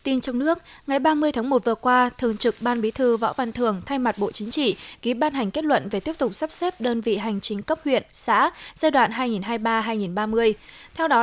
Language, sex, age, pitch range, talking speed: Vietnamese, female, 20-39, 215-270 Hz, 235 wpm